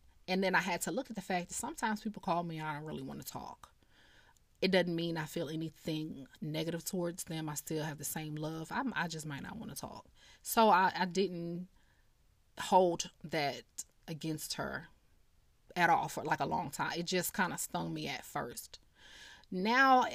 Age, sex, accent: 30-49, female, American